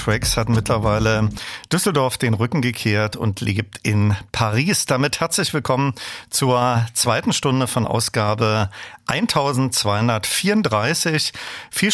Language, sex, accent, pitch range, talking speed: German, male, German, 110-135 Hz, 105 wpm